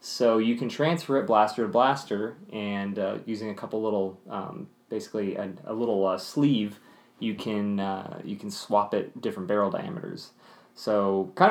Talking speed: 170 wpm